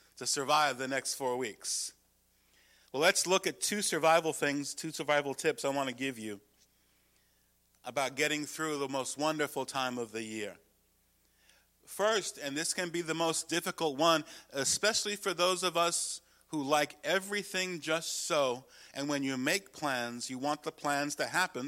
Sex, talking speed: male, 170 wpm